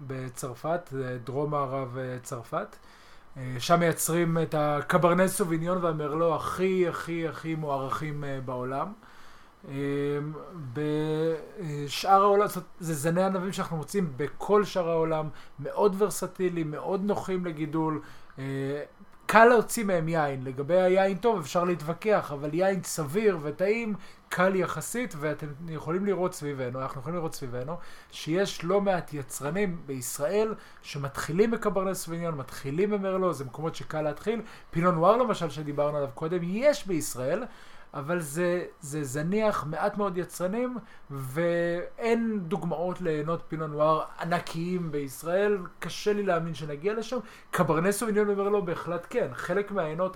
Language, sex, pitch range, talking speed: Hebrew, male, 145-185 Hz, 120 wpm